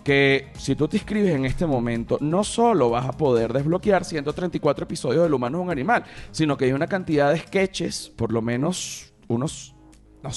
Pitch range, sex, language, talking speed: 130-175 Hz, male, Spanish, 195 wpm